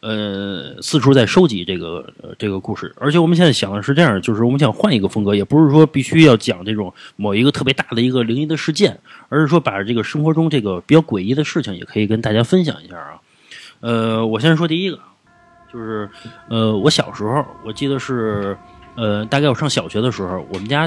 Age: 30-49